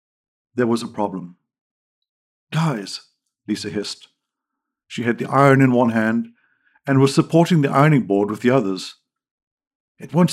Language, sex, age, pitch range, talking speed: English, male, 50-69, 110-155 Hz, 145 wpm